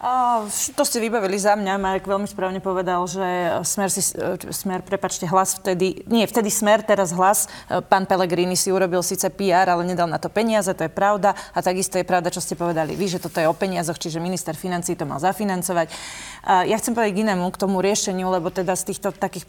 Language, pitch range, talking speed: Slovak, 180-210 Hz, 205 wpm